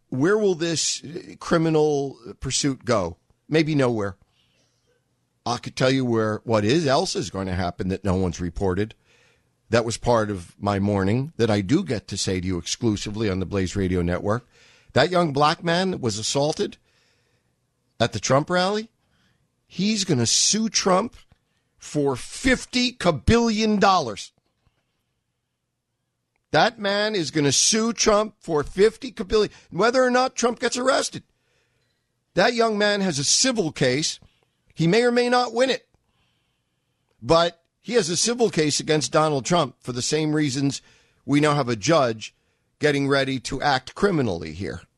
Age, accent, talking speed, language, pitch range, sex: 50-69, American, 155 wpm, English, 115-185 Hz, male